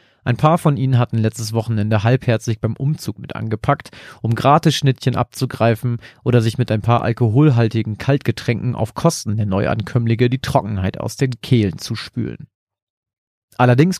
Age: 40-59